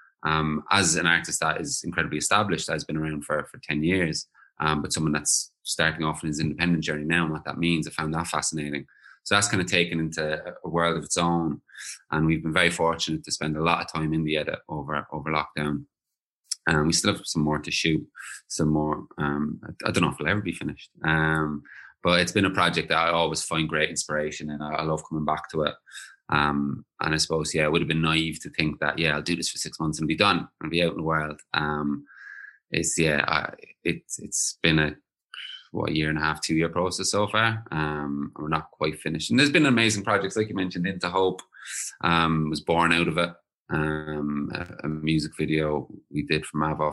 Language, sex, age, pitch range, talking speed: English, male, 20-39, 75-85 Hz, 230 wpm